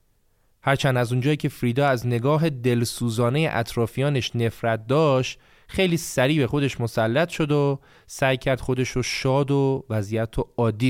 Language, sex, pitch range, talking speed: Persian, male, 110-140 Hz, 150 wpm